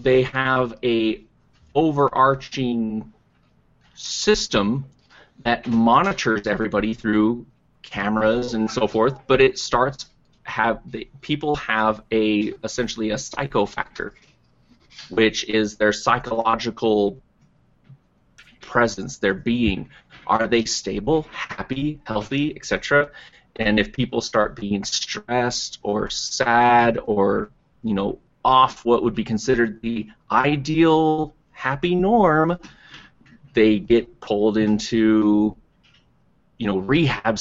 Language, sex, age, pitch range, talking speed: English, male, 30-49, 105-130 Hz, 105 wpm